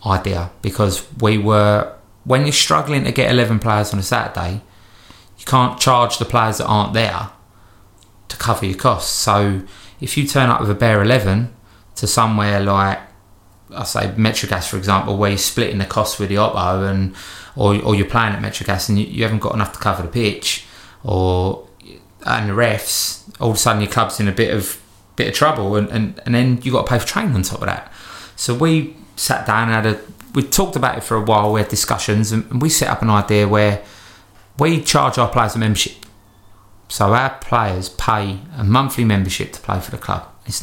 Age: 20-39